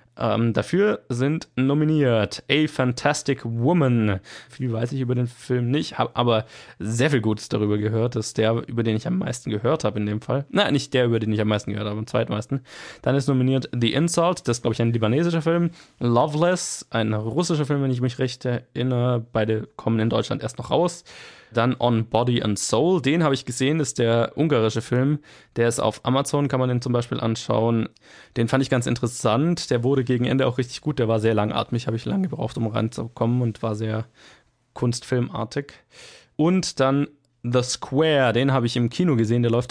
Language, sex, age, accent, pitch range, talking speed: German, male, 20-39, German, 115-135 Hz, 205 wpm